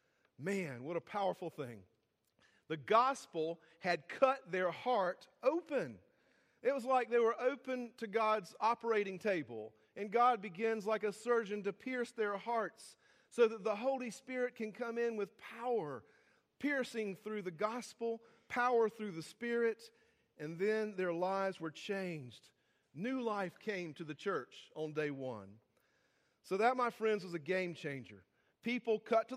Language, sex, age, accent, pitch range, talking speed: English, male, 40-59, American, 175-230 Hz, 155 wpm